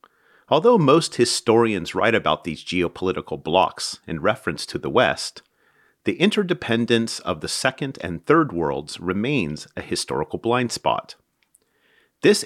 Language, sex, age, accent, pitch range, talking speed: English, male, 40-59, American, 90-135 Hz, 130 wpm